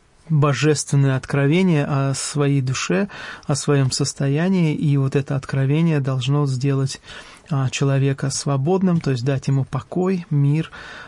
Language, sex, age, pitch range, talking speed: English, male, 20-39, 135-150 Hz, 120 wpm